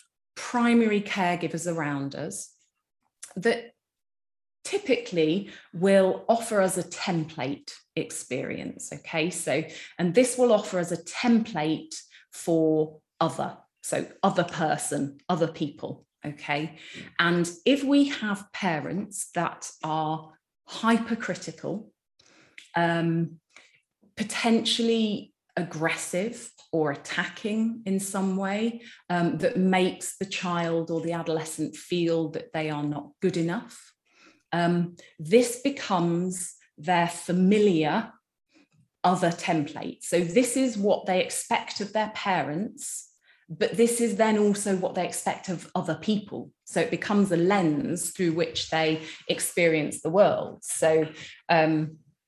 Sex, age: female, 30-49